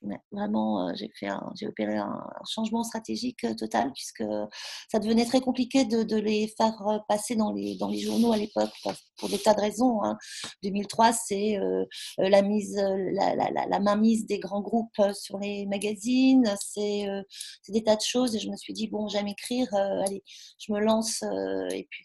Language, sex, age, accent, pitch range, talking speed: French, female, 40-59, French, 195-230 Hz, 200 wpm